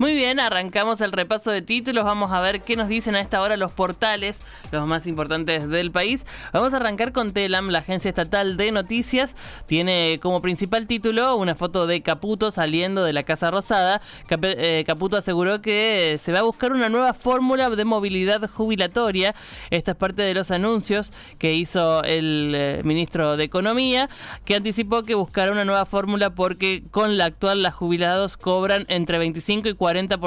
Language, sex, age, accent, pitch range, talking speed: Spanish, male, 20-39, Argentinian, 170-220 Hz, 175 wpm